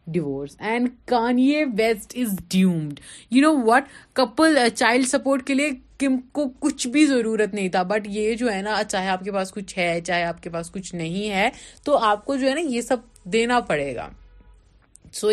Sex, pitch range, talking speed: female, 180-240 Hz, 195 wpm